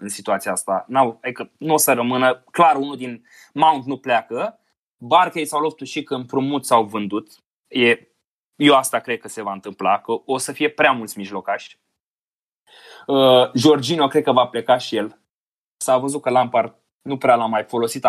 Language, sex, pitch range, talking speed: Romanian, male, 120-150 Hz, 180 wpm